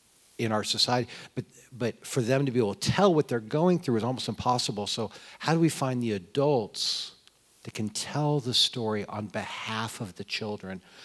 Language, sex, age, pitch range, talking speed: English, male, 50-69, 100-130 Hz, 195 wpm